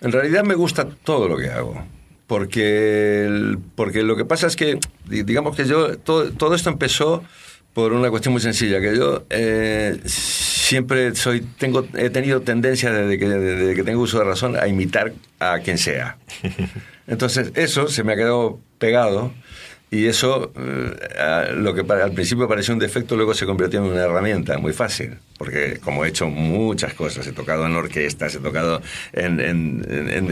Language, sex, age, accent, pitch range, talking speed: Spanish, male, 60-79, Spanish, 90-115 Hz, 180 wpm